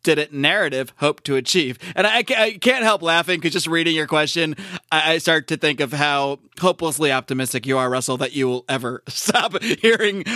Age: 30-49